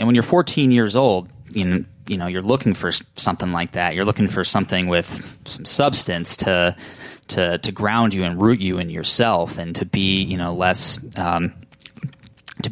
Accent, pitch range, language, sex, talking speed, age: American, 90-115 Hz, English, male, 185 wpm, 20-39